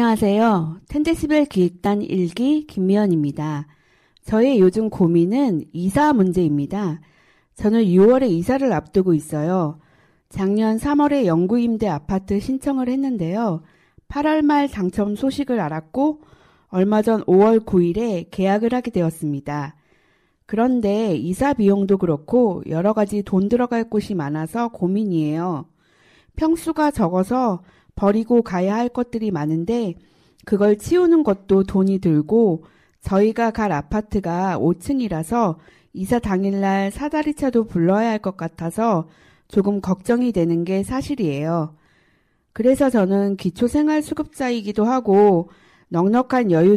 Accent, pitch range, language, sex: native, 175-240 Hz, Korean, female